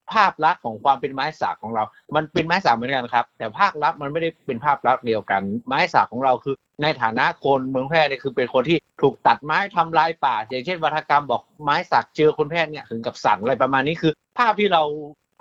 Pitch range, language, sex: 125-165 Hz, Thai, male